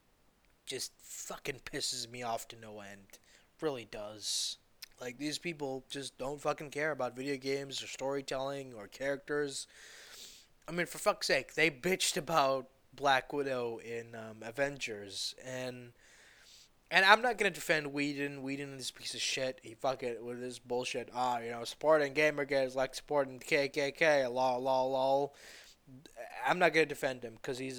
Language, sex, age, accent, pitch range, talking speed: English, male, 20-39, American, 120-150 Hz, 165 wpm